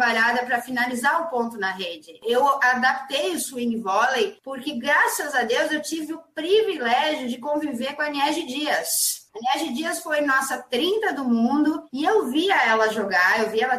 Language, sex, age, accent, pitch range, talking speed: Portuguese, female, 20-39, Brazilian, 245-305 Hz, 185 wpm